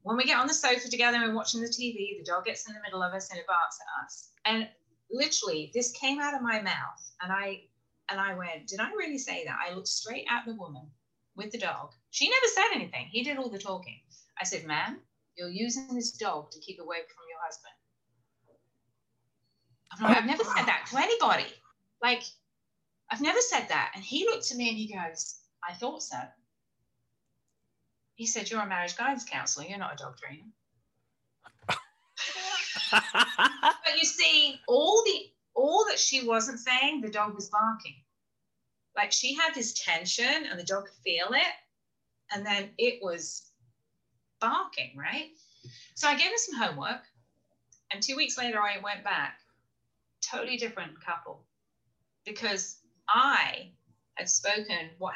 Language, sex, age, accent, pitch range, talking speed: English, female, 30-49, British, 175-260 Hz, 175 wpm